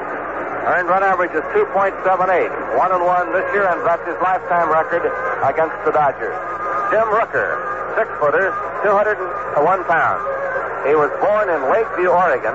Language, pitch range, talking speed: English, 165-200 Hz, 140 wpm